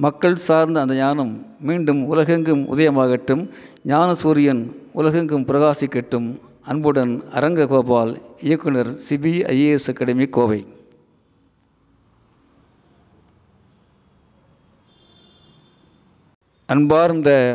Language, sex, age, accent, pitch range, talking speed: Tamil, male, 50-69, native, 135-165 Hz, 60 wpm